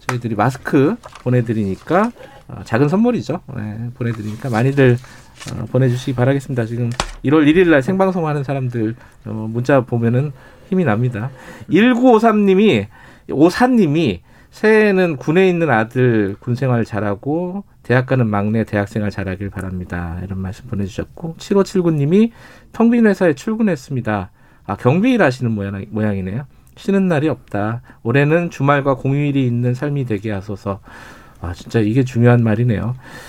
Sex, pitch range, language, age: male, 110-175 Hz, Korean, 40-59